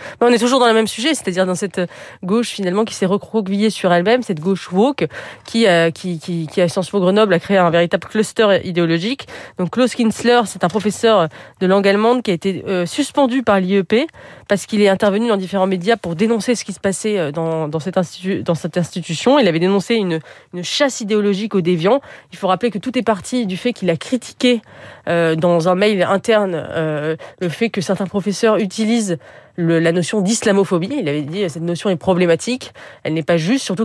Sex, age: female, 30-49